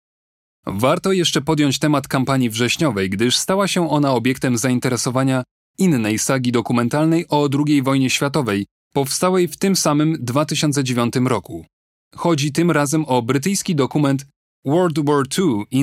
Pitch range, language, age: 125-155 Hz, Polish, 30-49